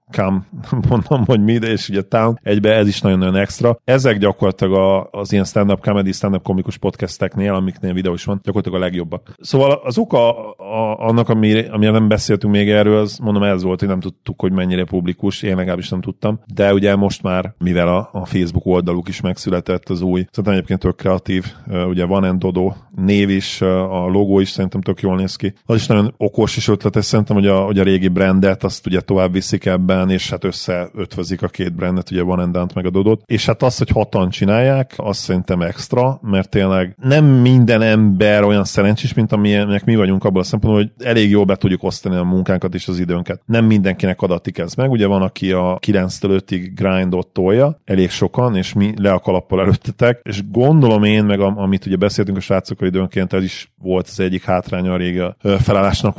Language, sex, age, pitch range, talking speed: Hungarian, male, 30-49, 95-105 Hz, 200 wpm